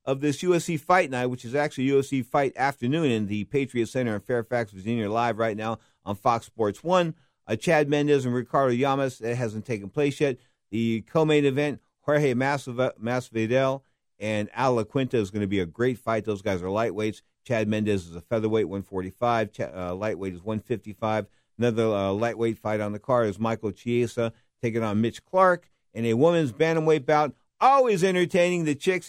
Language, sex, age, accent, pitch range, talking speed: English, male, 50-69, American, 115-190 Hz, 185 wpm